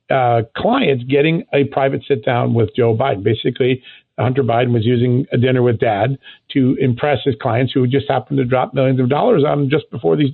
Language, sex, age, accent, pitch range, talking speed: English, male, 50-69, American, 120-145 Hz, 210 wpm